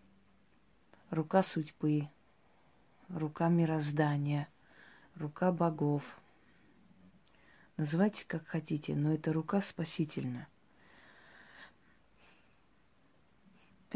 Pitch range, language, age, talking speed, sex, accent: 155-185 Hz, Russian, 40-59, 55 wpm, female, native